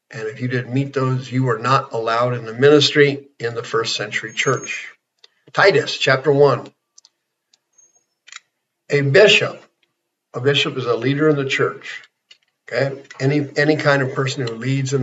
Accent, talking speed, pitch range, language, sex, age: American, 155 wpm, 130-150 Hz, English, male, 50-69